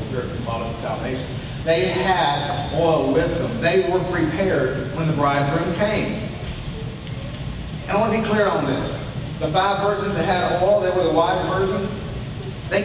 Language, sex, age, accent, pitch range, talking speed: English, male, 40-59, American, 140-195 Hz, 165 wpm